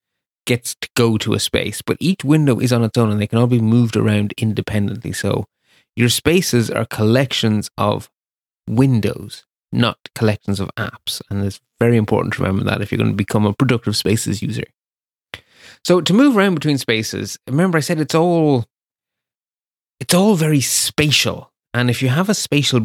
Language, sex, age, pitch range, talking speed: English, male, 30-49, 105-140 Hz, 180 wpm